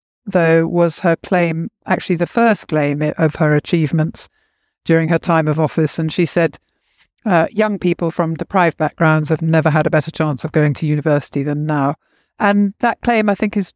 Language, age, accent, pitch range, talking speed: English, 50-69, British, 160-200 Hz, 190 wpm